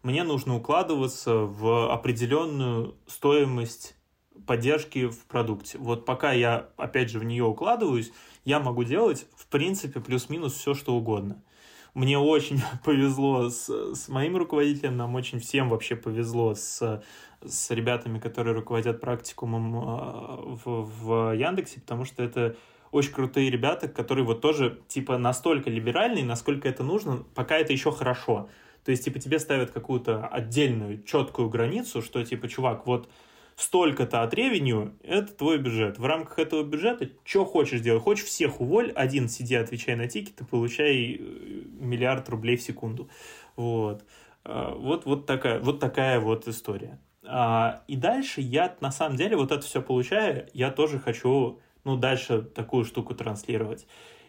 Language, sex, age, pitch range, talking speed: Russian, male, 20-39, 115-140 Hz, 145 wpm